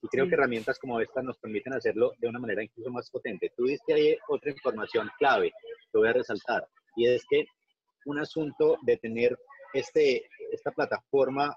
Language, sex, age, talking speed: Spanish, male, 30-49, 180 wpm